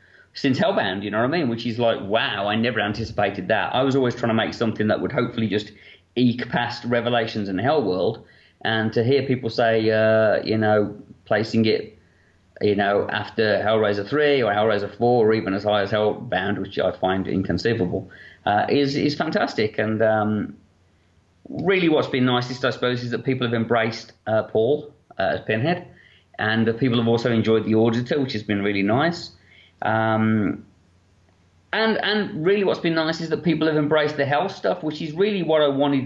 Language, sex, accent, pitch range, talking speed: English, male, British, 110-130 Hz, 195 wpm